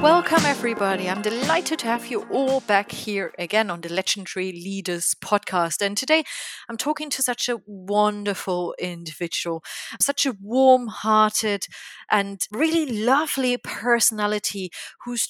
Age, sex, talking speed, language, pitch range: 30-49, female, 130 wpm, English, 195-265 Hz